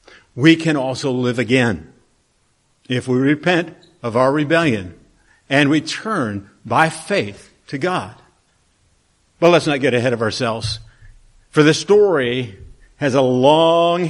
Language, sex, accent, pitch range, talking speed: English, male, American, 115-165 Hz, 130 wpm